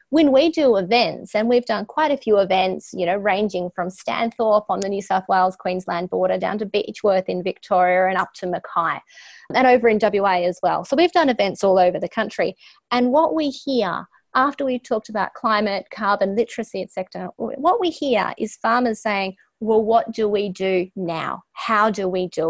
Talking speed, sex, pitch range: 195 wpm, female, 185-240 Hz